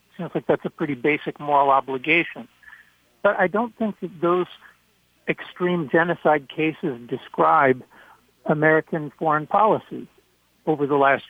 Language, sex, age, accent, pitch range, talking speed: English, male, 60-79, American, 145-185 Hz, 135 wpm